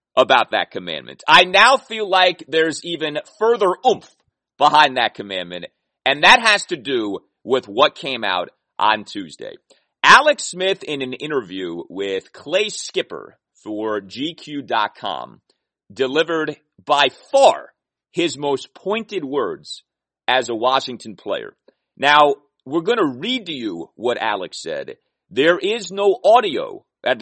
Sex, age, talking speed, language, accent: male, 40-59, 130 wpm, English, American